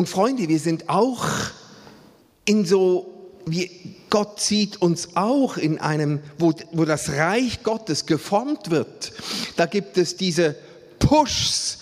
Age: 50-69